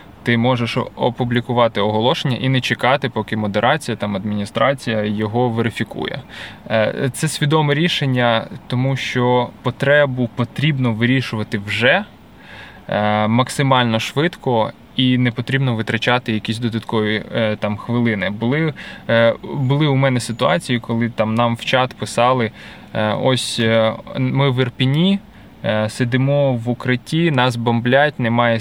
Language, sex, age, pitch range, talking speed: Ukrainian, male, 20-39, 115-135 Hz, 110 wpm